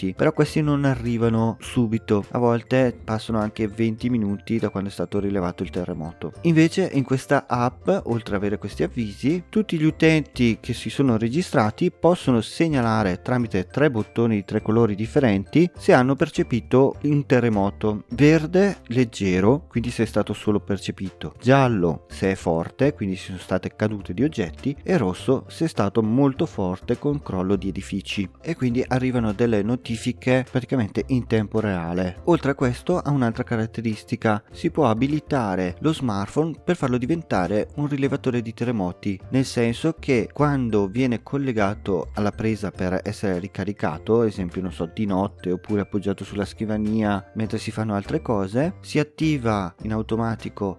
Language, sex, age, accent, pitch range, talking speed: Italian, male, 30-49, native, 100-130 Hz, 160 wpm